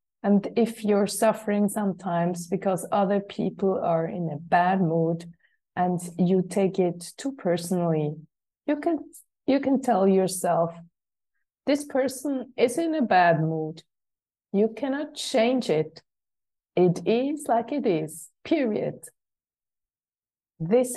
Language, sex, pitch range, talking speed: English, female, 175-225 Hz, 125 wpm